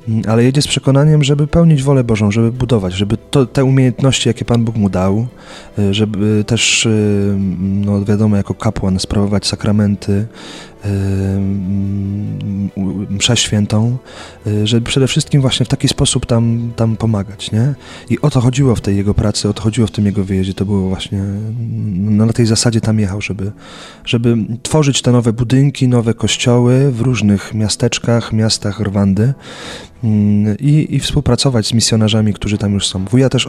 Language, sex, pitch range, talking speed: Polish, male, 100-120 Hz, 160 wpm